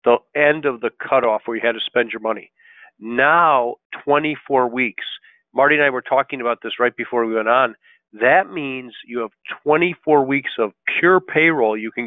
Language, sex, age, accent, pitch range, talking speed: English, male, 50-69, American, 115-140 Hz, 190 wpm